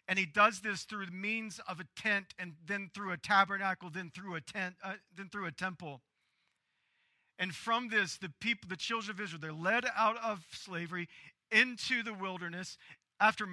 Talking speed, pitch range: 185 wpm, 170-205 Hz